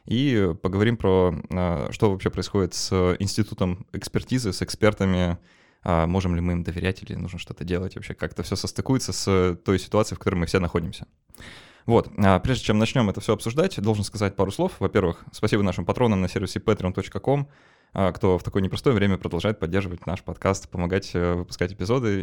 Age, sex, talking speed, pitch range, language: 20-39, male, 165 wpm, 90-110 Hz, Russian